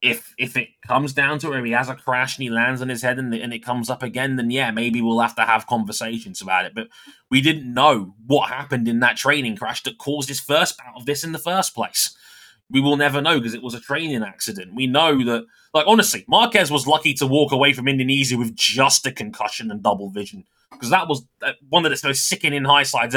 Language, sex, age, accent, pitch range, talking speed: English, male, 20-39, British, 115-145 Hz, 245 wpm